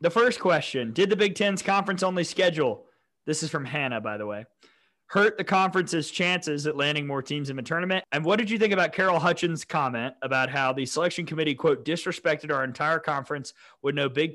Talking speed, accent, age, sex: 205 wpm, American, 30-49, male